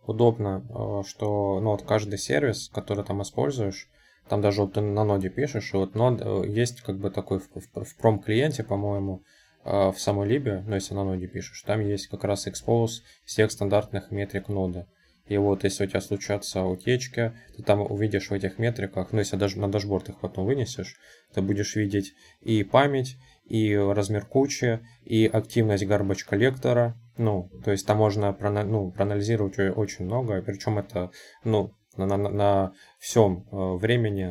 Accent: native